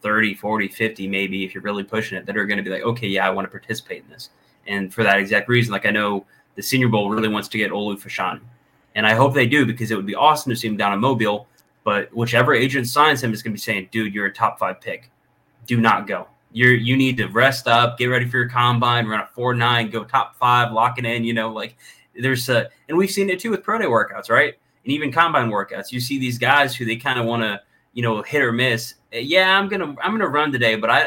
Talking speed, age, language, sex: 260 wpm, 20-39, English, male